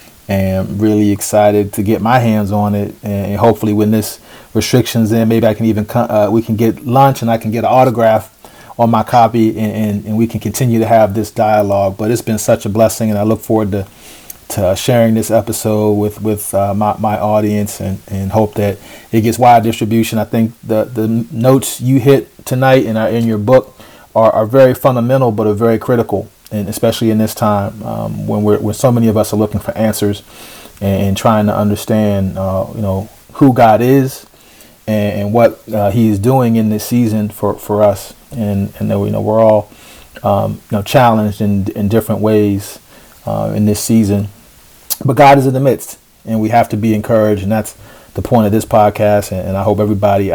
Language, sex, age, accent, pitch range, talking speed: English, male, 40-59, American, 105-115 Hz, 210 wpm